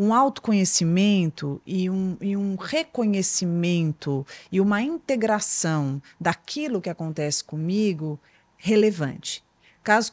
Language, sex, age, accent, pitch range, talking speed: Portuguese, female, 40-59, Brazilian, 165-220 Hz, 95 wpm